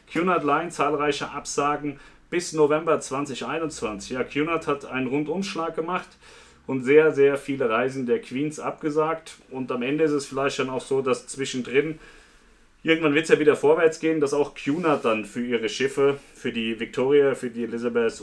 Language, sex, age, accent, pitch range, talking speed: German, male, 40-59, German, 120-150 Hz, 170 wpm